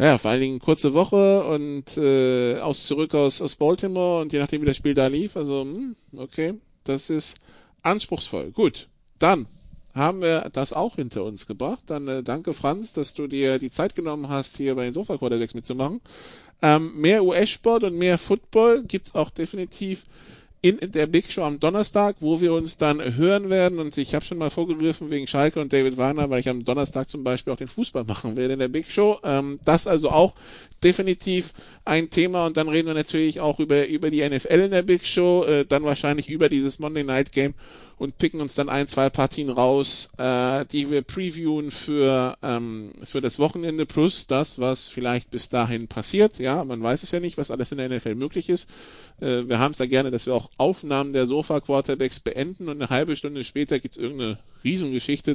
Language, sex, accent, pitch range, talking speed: German, male, German, 130-165 Hz, 200 wpm